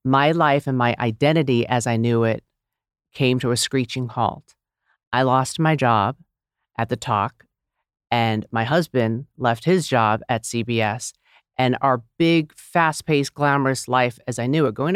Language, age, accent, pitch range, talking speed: English, 50-69, American, 125-160 Hz, 160 wpm